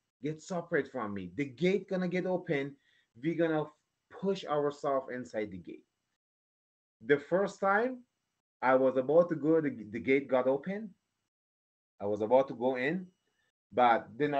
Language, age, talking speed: English, 30-49, 165 wpm